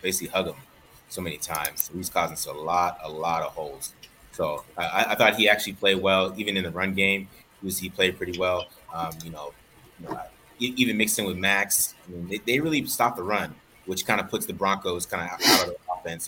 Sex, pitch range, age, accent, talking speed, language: male, 85-100 Hz, 30-49, American, 230 wpm, English